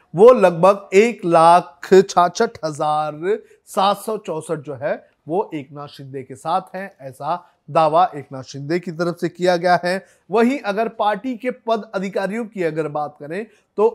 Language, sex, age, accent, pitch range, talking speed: Hindi, male, 30-49, native, 150-205 Hz, 165 wpm